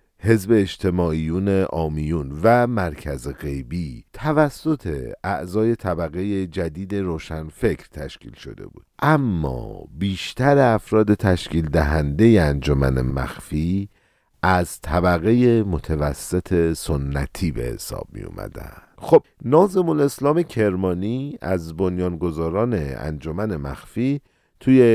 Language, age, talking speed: Persian, 50-69, 90 wpm